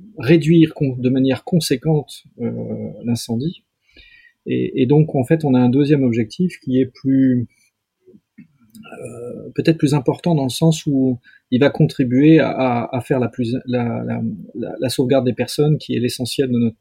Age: 40-59